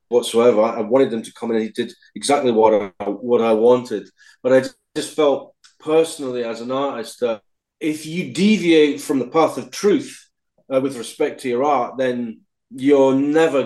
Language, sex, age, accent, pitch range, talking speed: English, male, 40-59, British, 125-155 Hz, 175 wpm